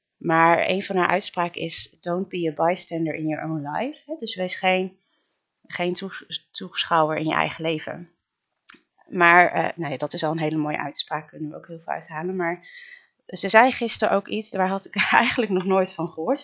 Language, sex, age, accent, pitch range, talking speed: Dutch, female, 30-49, Dutch, 160-205 Hz, 195 wpm